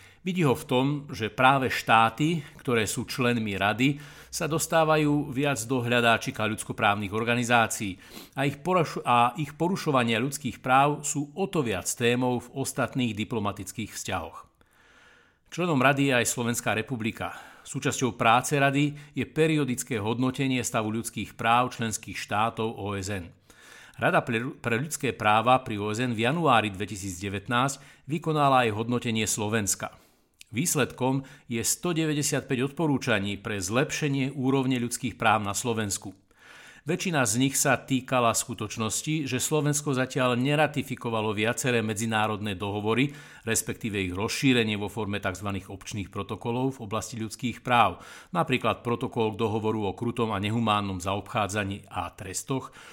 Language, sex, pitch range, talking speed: Slovak, male, 110-135 Hz, 125 wpm